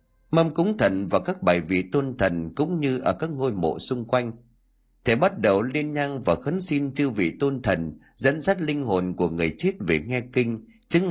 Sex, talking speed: male, 215 wpm